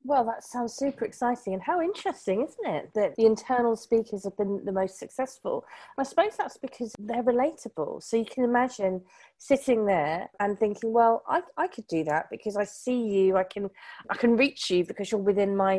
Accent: British